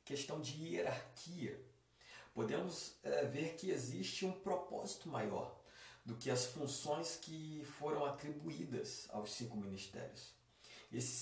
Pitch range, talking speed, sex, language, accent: 100-145 Hz, 120 wpm, male, Portuguese, Brazilian